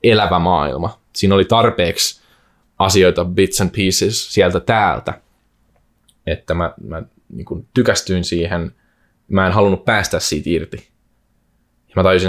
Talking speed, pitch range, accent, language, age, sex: 115 wpm, 90-120 Hz, native, Finnish, 20-39, male